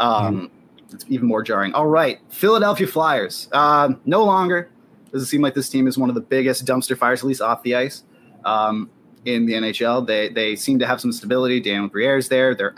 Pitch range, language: 120-155 Hz, English